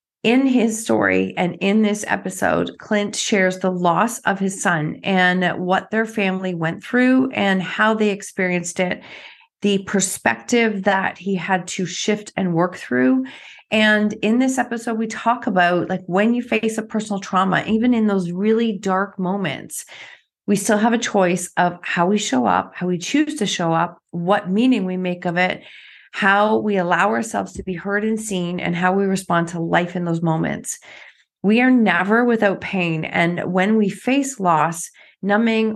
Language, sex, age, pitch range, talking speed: English, female, 30-49, 180-220 Hz, 180 wpm